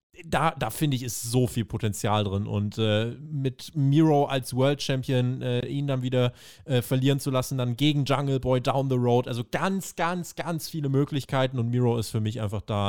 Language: German